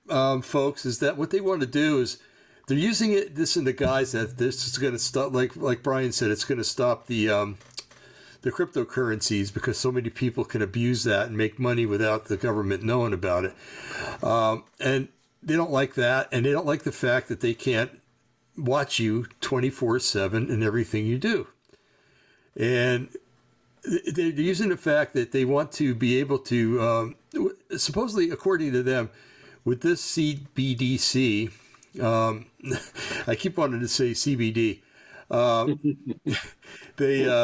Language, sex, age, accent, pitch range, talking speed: English, male, 60-79, American, 115-140 Hz, 165 wpm